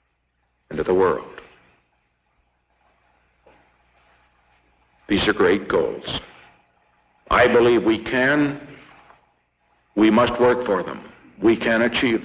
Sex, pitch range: male, 95-125 Hz